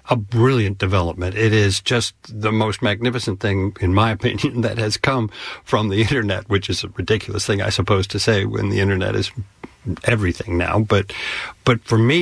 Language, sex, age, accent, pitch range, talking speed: English, male, 60-79, American, 95-115 Hz, 185 wpm